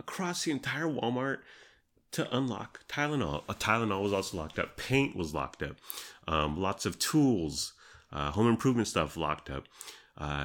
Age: 30-49